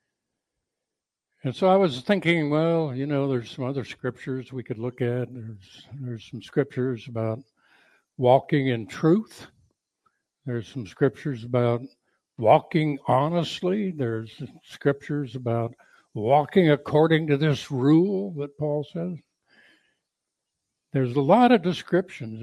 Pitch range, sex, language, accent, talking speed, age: 125-160 Hz, male, English, American, 125 wpm, 60-79